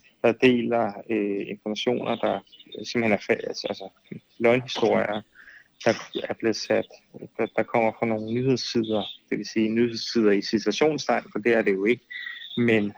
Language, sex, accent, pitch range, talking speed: Danish, male, native, 110-135 Hz, 155 wpm